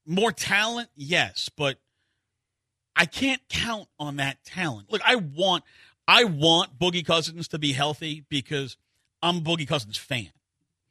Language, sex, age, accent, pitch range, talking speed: English, male, 50-69, American, 130-180 Hz, 145 wpm